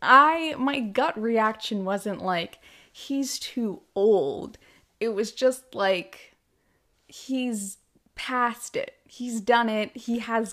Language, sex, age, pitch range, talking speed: English, female, 20-39, 195-250 Hz, 120 wpm